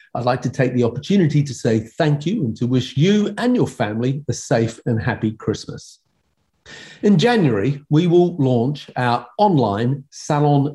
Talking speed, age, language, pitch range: 165 wpm, 40-59, English, 120-160 Hz